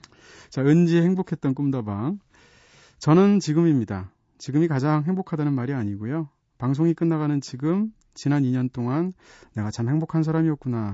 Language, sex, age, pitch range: Korean, male, 40-59, 115-165 Hz